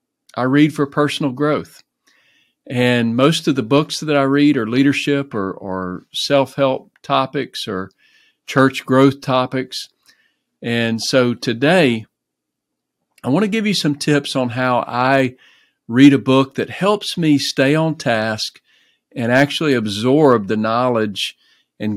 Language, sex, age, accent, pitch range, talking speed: English, male, 50-69, American, 120-145 Hz, 140 wpm